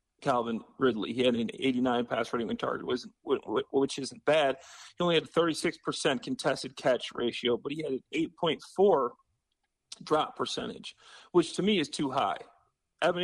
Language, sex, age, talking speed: English, male, 40-59, 170 wpm